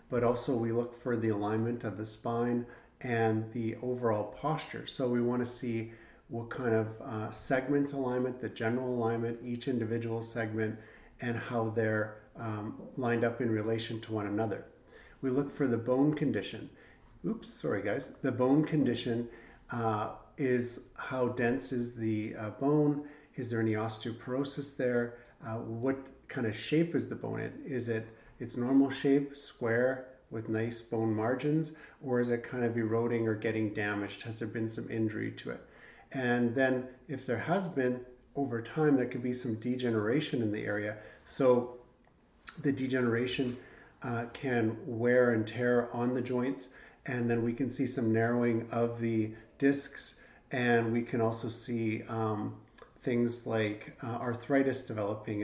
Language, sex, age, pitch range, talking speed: English, male, 50-69, 115-130 Hz, 160 wpm